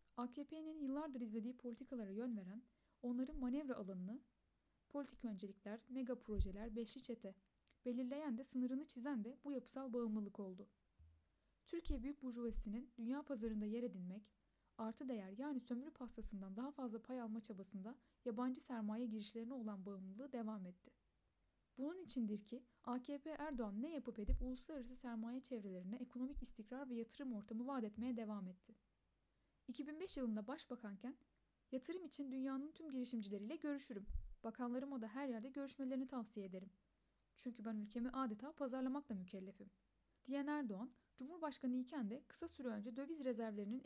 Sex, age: female, 10-29